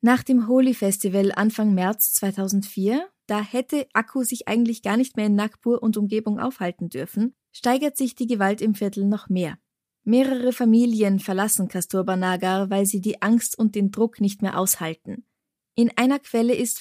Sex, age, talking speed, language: female, 20-39, 165 wpm, German